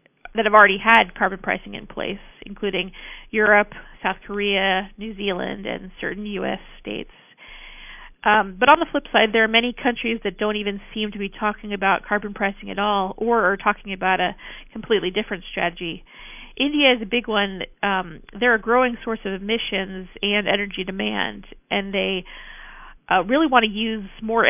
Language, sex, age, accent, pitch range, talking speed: English, female, 40-59, American, 195-225 Hz, 175 wpm